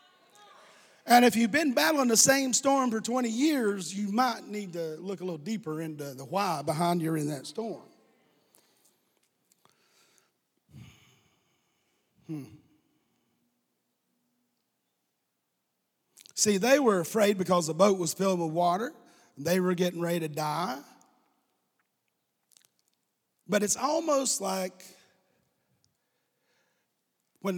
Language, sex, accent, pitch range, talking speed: English, male, American, 160-240 Hz, 110 wpm